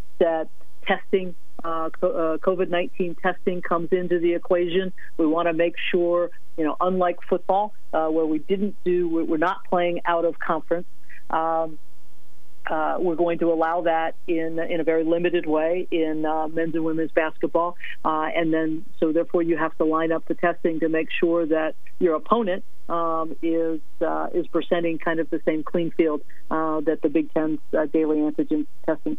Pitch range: 155-175 Hz